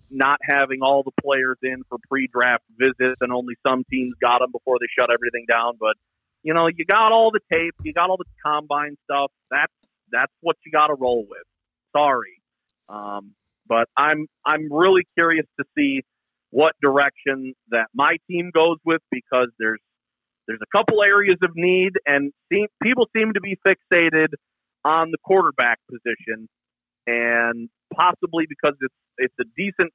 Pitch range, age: 120-165 Hz, 40-59